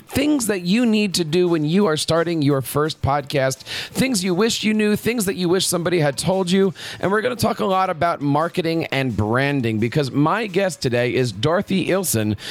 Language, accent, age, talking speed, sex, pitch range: English, American, 40-59, 210 wpm, male, 130-180 Hz